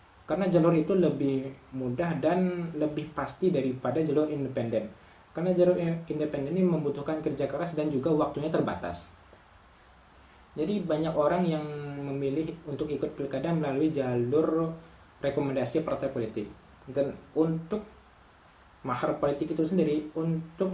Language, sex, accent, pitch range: Indonesian, male, native, 130-165 Hz